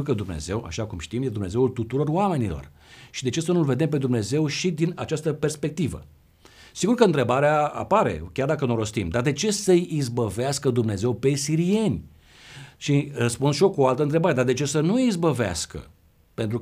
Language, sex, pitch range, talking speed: Romanian, male, 125-165 Hz, 190 wpm